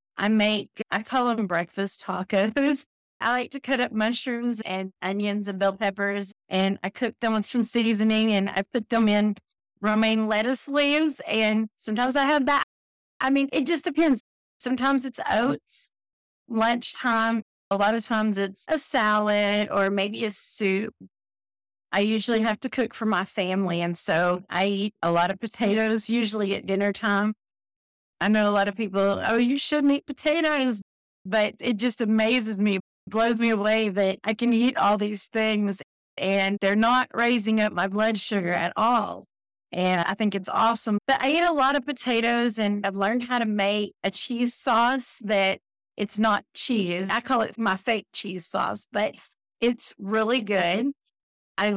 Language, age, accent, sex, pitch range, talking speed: English, 30-49, American, female, 195-240 Hz, 175 wpm